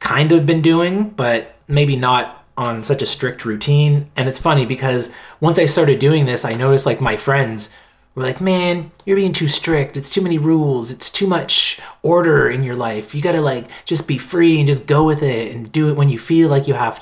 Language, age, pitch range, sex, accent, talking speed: English, 30-49, 125-150 Hz, male, American, 225 wpm